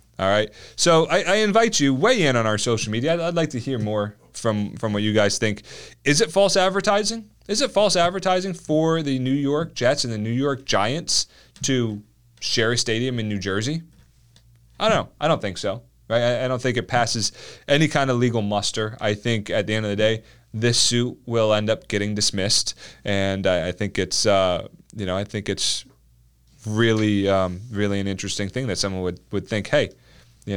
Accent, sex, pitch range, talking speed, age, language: American, male, 100-140 Hz, 210 wpm, 30-49, English